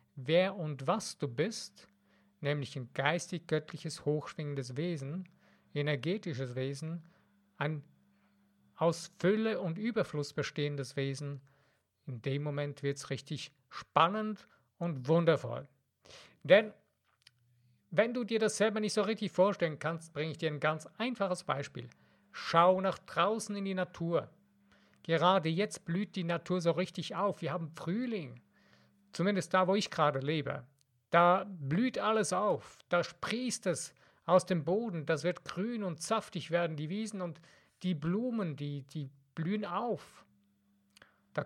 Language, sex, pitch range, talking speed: German, male, 145-190 Hz, 135 wpm